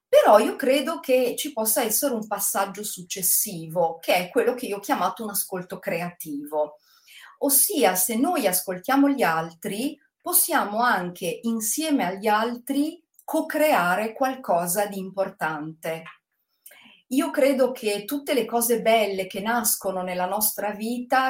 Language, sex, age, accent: Italian, female, 40-59, native